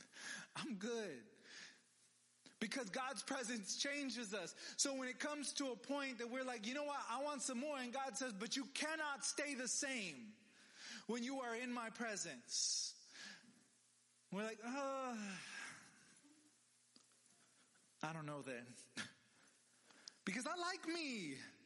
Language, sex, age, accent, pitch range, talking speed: English, male, 30-49, American, 165-255 Hz, 135 wpm